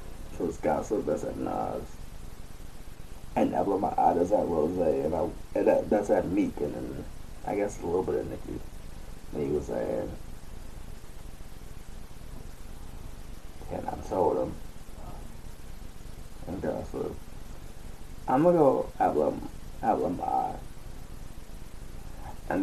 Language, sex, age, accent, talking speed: English, male, 20-39, American, 115 wpm